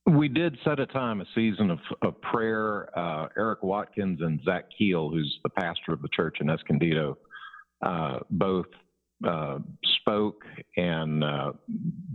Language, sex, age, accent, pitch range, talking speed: English, male, 50-69, American, 80-105 Hz, 150 wpm